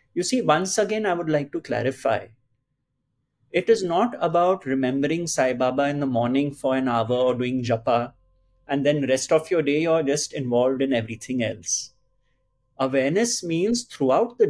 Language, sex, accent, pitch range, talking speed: English, male, Indian, 125-175 Hz, 170 wpm